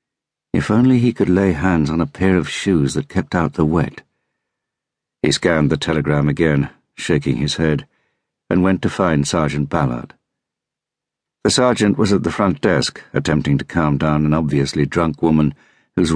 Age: 60-79